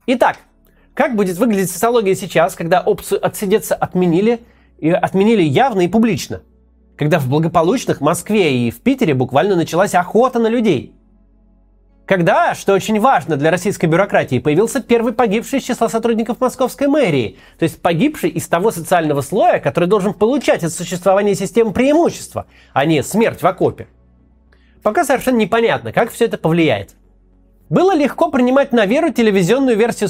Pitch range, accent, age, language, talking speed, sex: 175-240 Hz, native, 30-49, Russian, 150 wpm, male